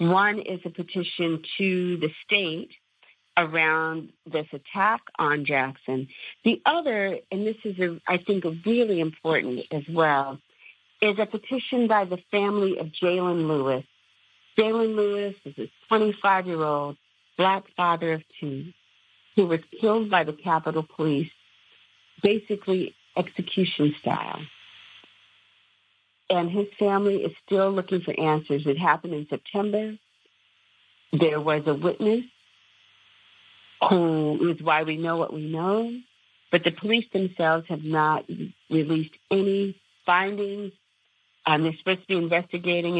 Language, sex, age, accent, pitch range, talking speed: English, female, 50-69, American, 150-195 Hz, 125 wpm